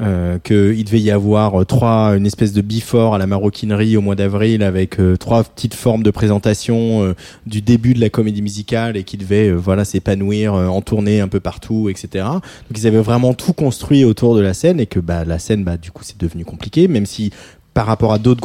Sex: male